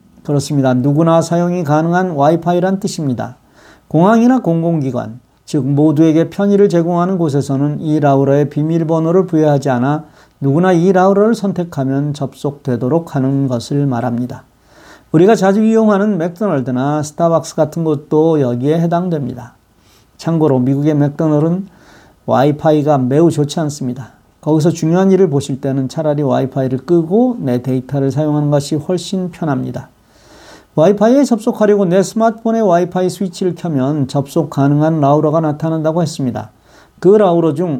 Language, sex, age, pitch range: Korean, male, 40-59, 135-175 Hz